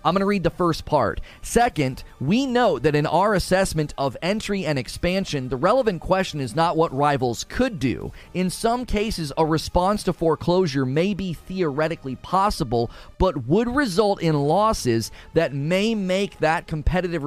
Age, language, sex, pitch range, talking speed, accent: 30-49, English, male, 145-190 Hz, 165 wpm, American